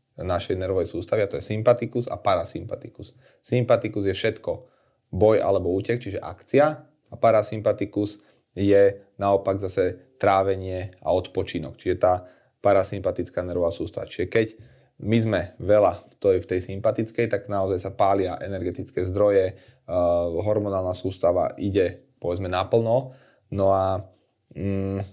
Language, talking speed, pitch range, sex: Slovak, 120 wpm, 95-115 Hz, male